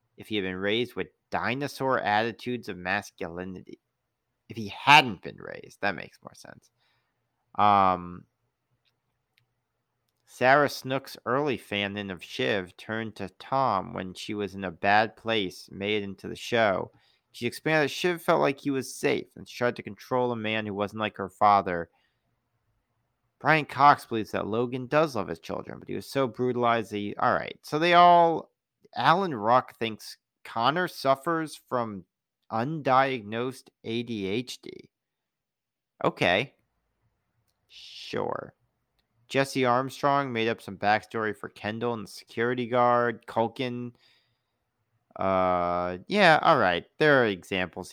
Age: 40-59